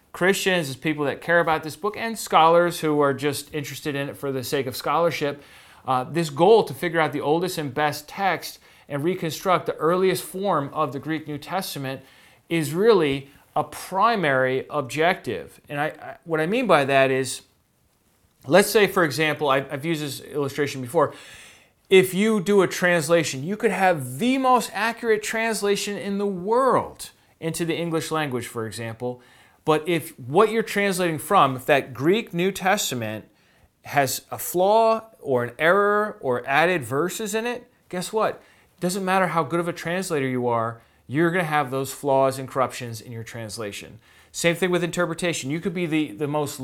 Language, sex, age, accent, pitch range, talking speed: English, male, 30-49, American, 140-185 Hz, 180 wpm